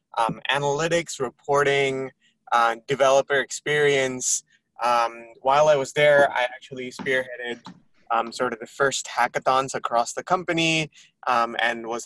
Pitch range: 120-145 Hz